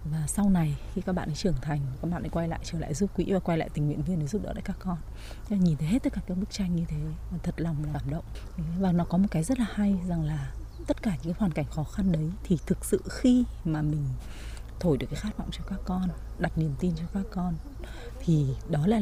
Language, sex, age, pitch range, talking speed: Vietnamese, female, 20-39, 165-230 Hz, 270 wpm